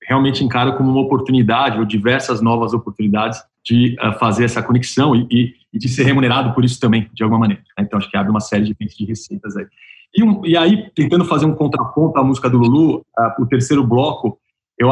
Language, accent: Portuguese, Brazilian